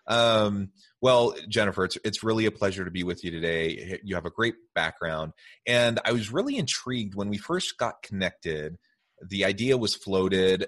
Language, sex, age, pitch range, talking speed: English, male, 30-49, 85-110 Hz, 180 wpm